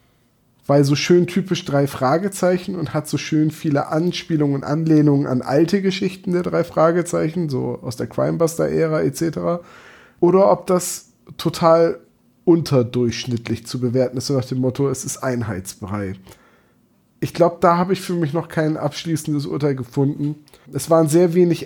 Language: German